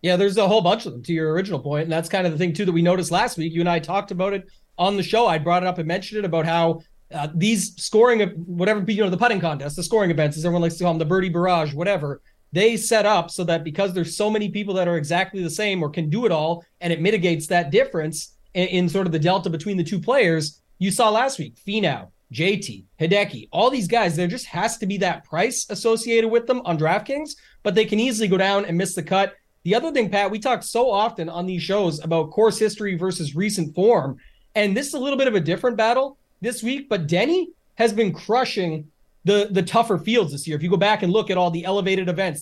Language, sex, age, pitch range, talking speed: English, male, 30-49, 170-215 Hz, 255 wpm